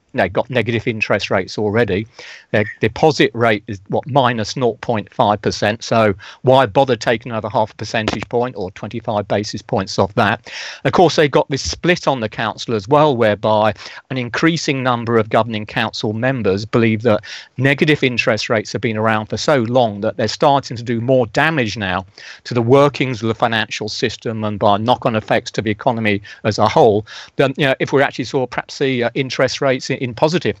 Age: 40-59